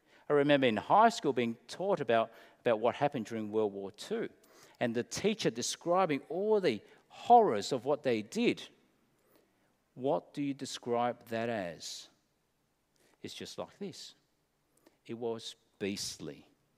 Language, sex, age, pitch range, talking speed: English, male, 50-69, 120-165 Hz, 140 wpm